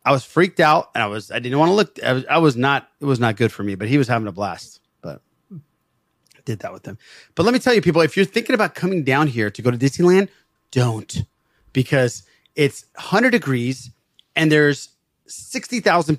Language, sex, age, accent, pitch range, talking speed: English, male, 30-49, American, 115-155 Hz, 220 wpm